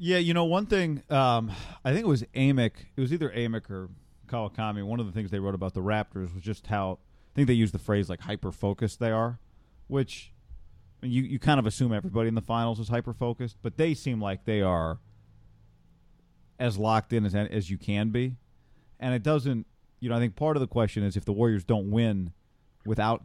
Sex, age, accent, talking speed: male, 40-59, American, 220 wpm